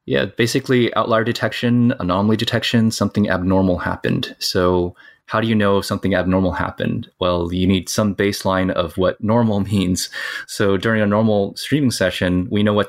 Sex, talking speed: male, 170 wpm